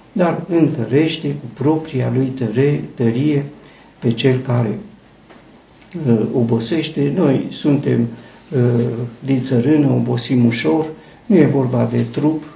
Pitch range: 115-145 Hz